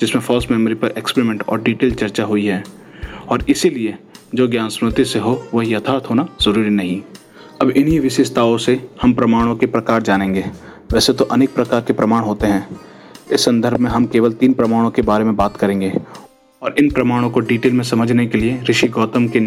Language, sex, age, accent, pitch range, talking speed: English, male, 30-49, Indian, 110-125 Hz, 155 wpm